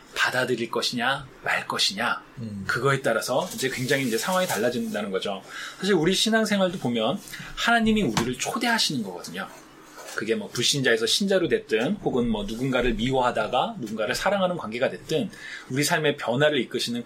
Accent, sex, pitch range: native, male, 140-210 Hz